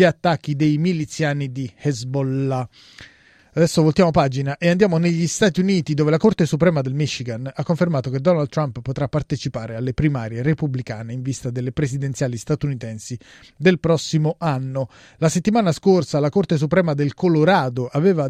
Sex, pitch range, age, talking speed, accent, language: male, 135-175 Hz, 30-49, 150 wpm, native, Italian